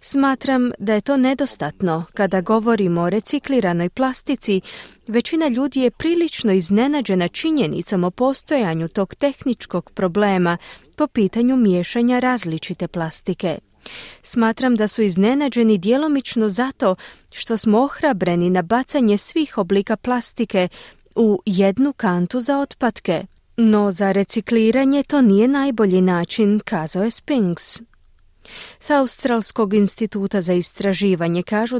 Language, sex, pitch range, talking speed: Croatian, female, 190-260 Hz, 115 wpm